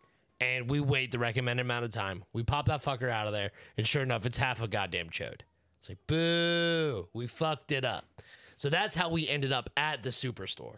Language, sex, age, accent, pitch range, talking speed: English, male, 30-49, American, 120-165 Hz, 215 wpm